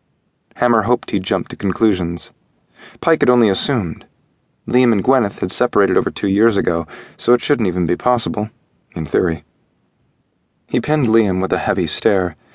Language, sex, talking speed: English, male, 165 wpm